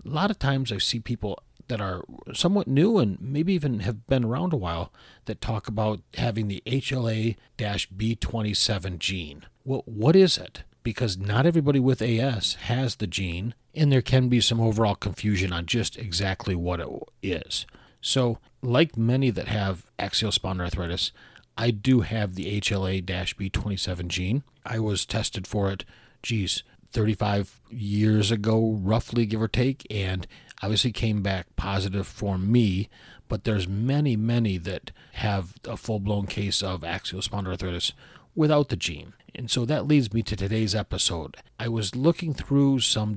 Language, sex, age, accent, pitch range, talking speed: English, male, 40-59, American, 100-125 Hz, 155 wpm